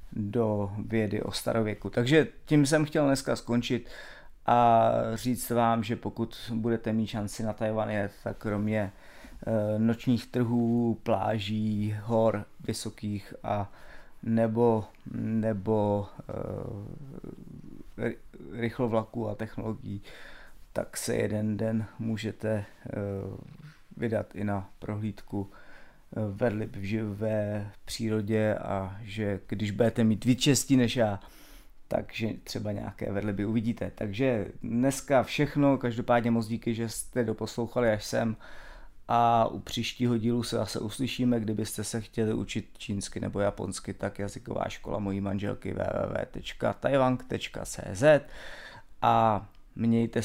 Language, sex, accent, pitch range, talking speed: Czech, male, native, 105-120 Hz, 110 wpm